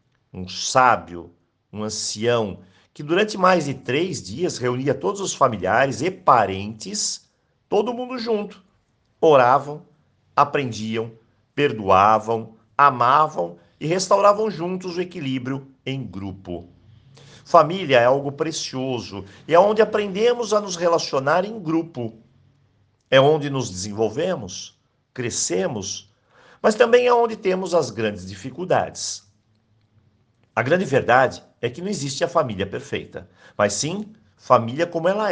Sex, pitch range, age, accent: male, 110-175 Hz, 50-69, Brazilian